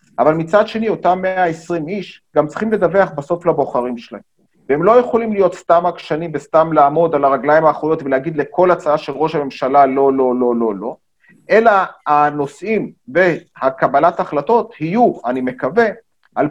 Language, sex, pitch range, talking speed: Hebrew, male, 155-200 Hz, 155 wpm